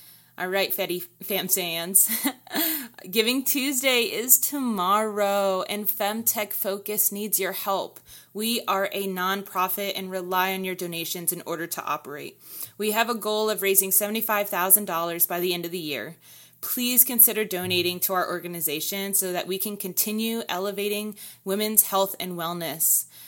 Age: 20-39